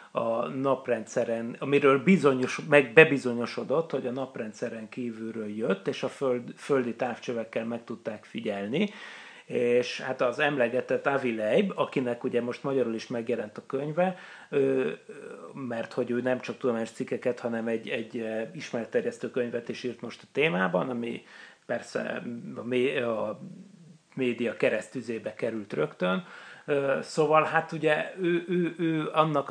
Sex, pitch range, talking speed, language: male, 120-150 Hz, 130 wpm, Hungarian